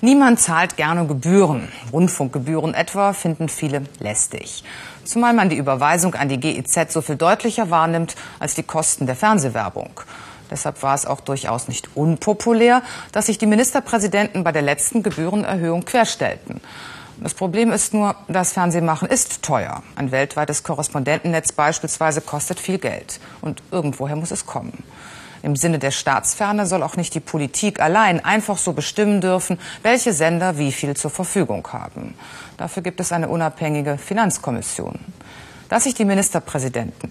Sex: female